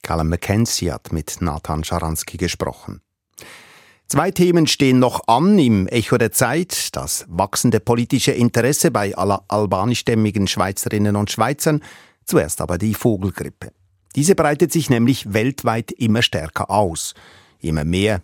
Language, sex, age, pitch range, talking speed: German, male, 50-69, 100-150 Hz, 130 wpm